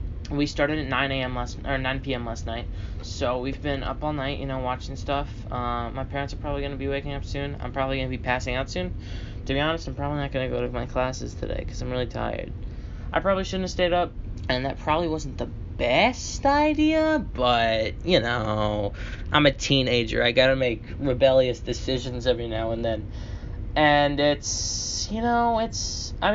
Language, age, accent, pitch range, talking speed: English, 10-29, American, 110-150 Hz, 200 wpm